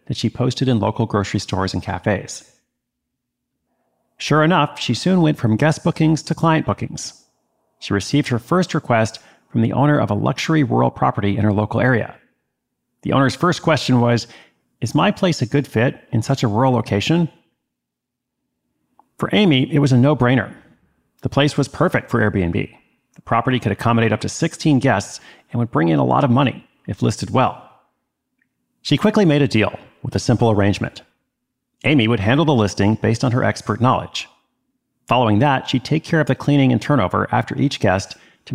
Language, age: English, 40-59